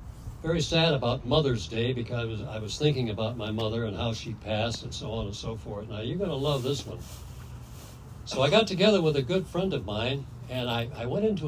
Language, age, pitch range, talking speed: English, 60-79, 115-165 Hz, 230 wpm